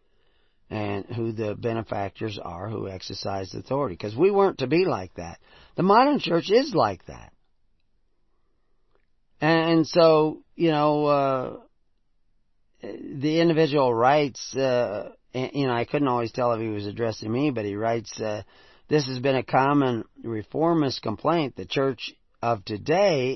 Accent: American